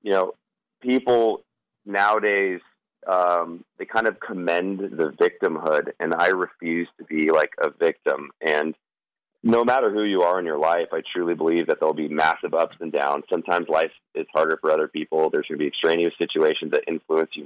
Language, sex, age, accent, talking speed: English, male, 30-49, American, 185 wpm